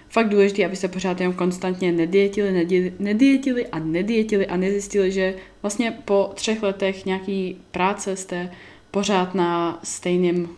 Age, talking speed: 20-39, 135 wpm